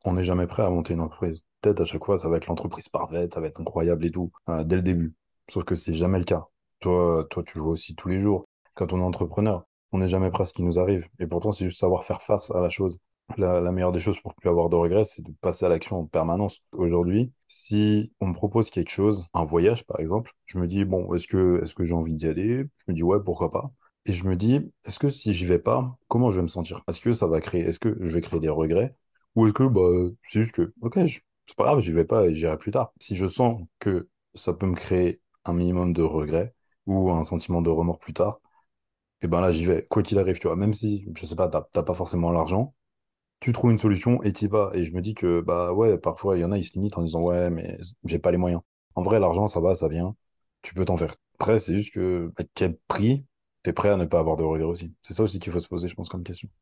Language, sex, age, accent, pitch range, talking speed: French, male, 20-39, French, 85-105 Hz, 280 wpm